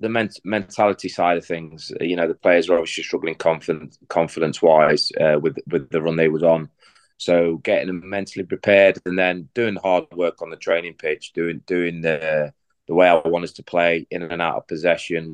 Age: 20-39